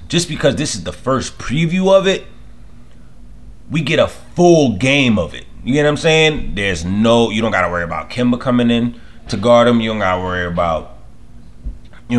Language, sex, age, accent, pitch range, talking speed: English, male, 30-49, American, 90-120 Hz, 195 wpm